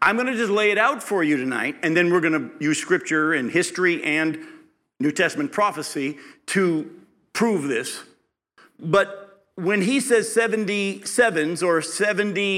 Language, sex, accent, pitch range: English, male, American, 155-220 Hz